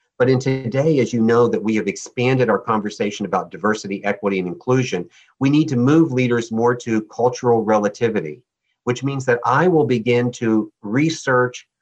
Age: 50-69